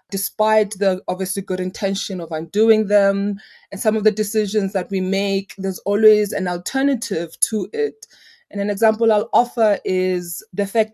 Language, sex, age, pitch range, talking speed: English, female, 20-39, 180-210 Hz, 165 wpm